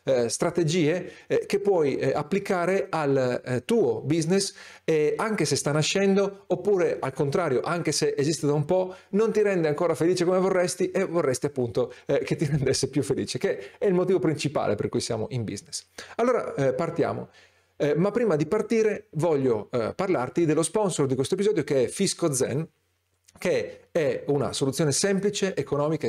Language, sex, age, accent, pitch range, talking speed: Italian, male, 40-59, native, 135-195 Hz, 175 wpm